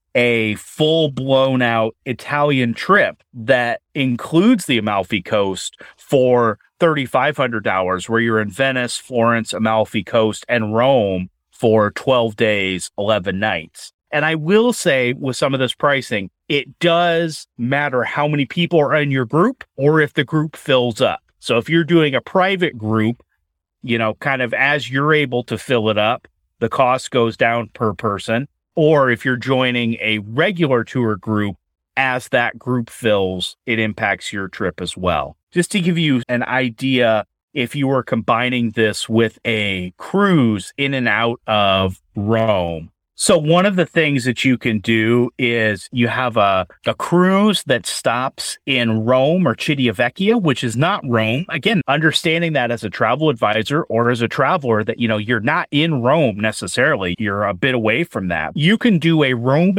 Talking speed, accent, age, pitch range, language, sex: 170 wpm, American, 30-49, 110-150 Hz, English, male